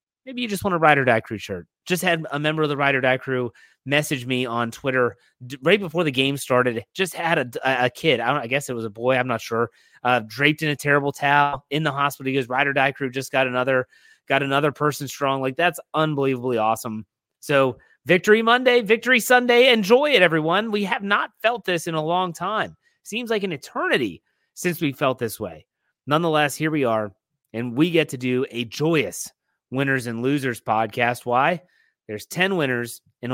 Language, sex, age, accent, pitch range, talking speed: English, male, 30-49, American, 125-160 Hz, 210 wpm